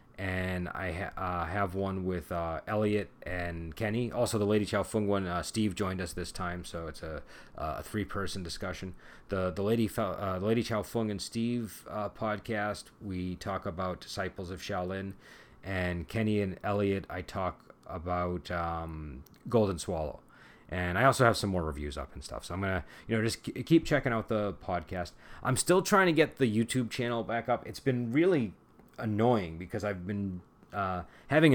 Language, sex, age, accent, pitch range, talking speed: English, male, 30-49, American, 90-110 Hz, 190 wpm